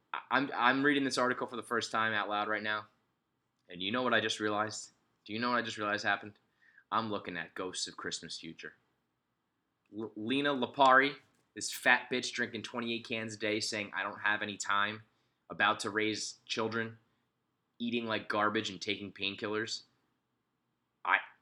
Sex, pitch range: male, 105-120 Hz